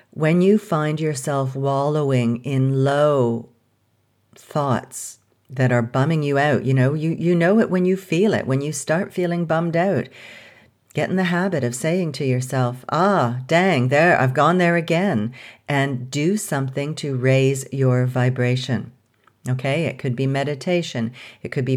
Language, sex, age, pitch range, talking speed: English, female, 50-69, 125-160 Hz, 165 wpm